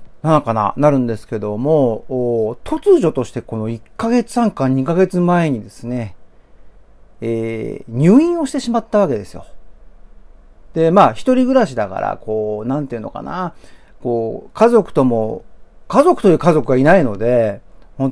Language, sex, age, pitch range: Japanese, male, 50-69, 115-185 Hz